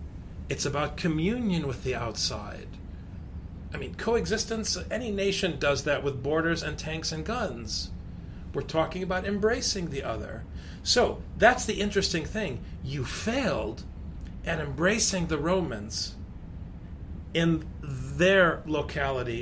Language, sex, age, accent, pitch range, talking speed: English, male, 40-59, American, 95-160 Hz, 120 wpm